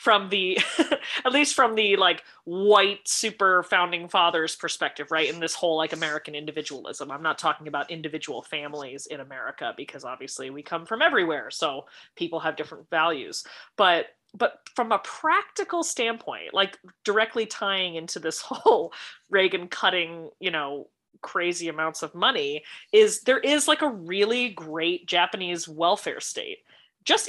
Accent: American